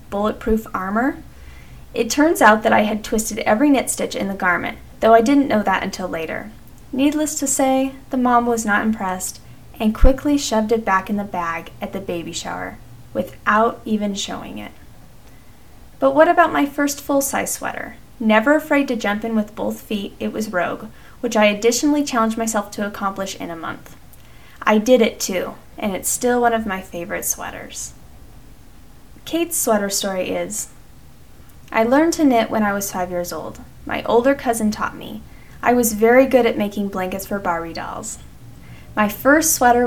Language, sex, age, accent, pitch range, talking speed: English, female, 10-29, American, 195-265 Hz, 180 wpm